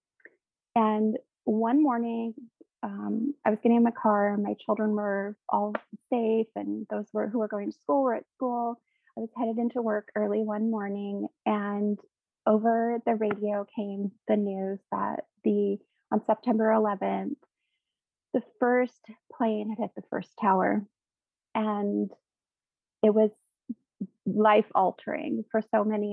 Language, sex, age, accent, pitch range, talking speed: English, female, 30-49, American, 200-235 Hz, 140 wpm